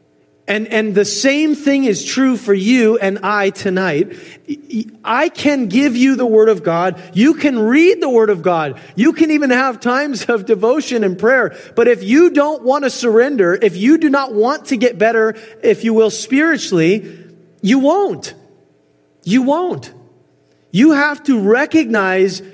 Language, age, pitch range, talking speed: English, 30-49, 175-240 Hz, 170 wpm